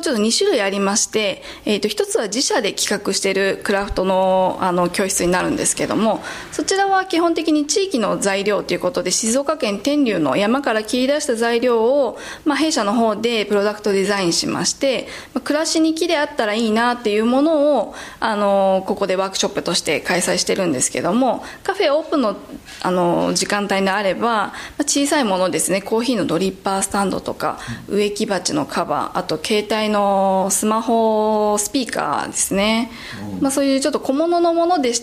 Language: Japanese